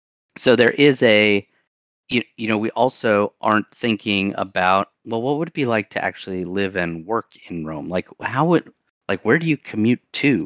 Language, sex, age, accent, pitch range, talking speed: English, male, 30-49, American, 90-115 Hz, 195 wpm